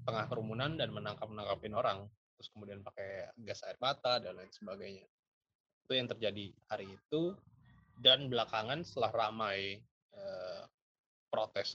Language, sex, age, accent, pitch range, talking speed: Indonesian, male, 20-39, native, 105-125 Hz, 130 wpm